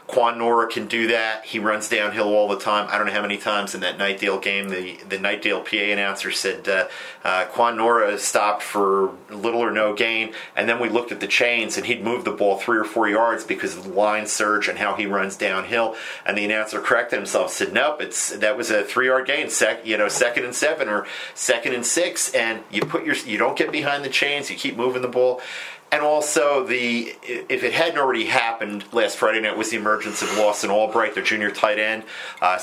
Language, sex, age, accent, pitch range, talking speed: English, male, 40-59, American, 105-120 Hz, 230 wpm